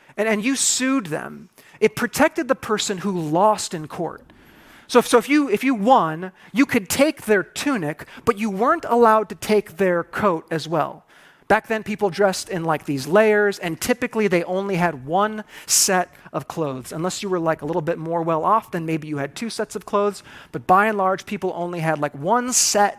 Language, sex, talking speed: English, male, 210 wpm